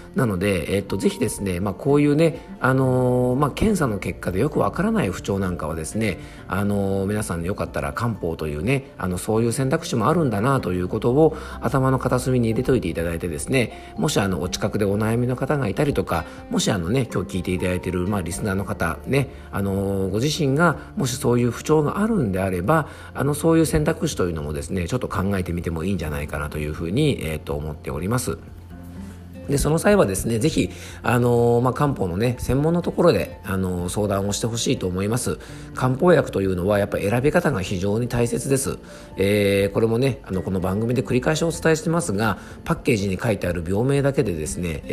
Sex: male